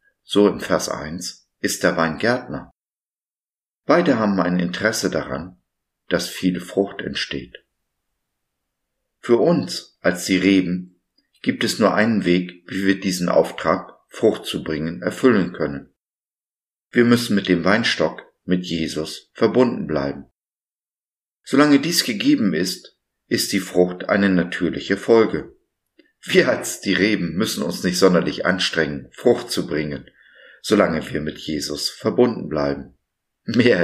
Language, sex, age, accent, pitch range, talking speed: German, male, 50-69, German, 90-110 Hz, 130 wpm